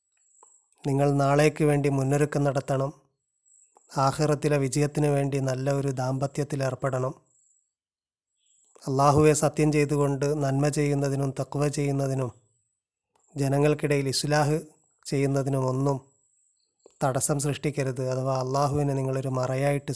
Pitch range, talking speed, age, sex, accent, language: 135-150 Hz, 80 wpm, 30-49, male, native, Malayalam